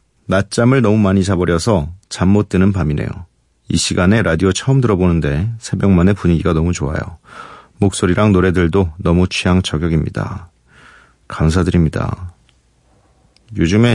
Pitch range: 80-105 Hz